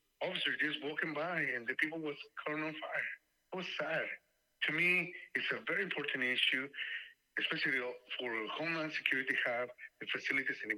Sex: male